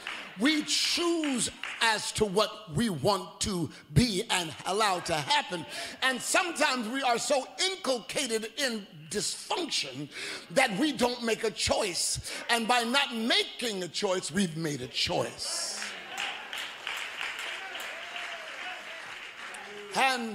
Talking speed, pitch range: 110 wpm, 200-265 Hz